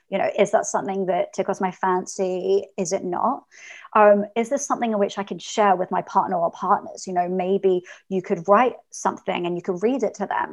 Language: English